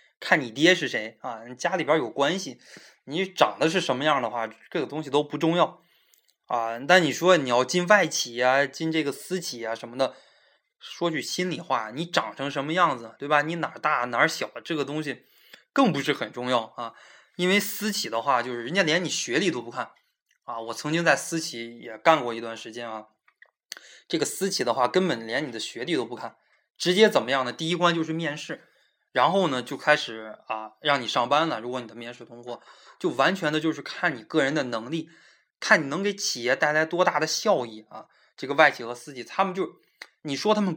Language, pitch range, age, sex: Chinese, 120-170 Hz, 20-39, male